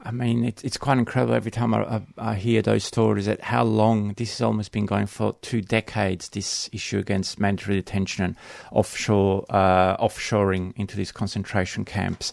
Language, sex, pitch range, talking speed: English, male, 100-120 Hz, 185 wpm